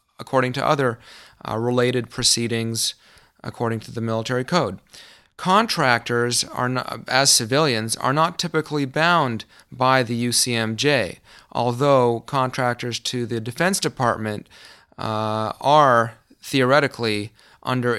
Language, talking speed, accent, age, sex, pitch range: English, 110 wpm, American, 30-49, male, 110-130 Hz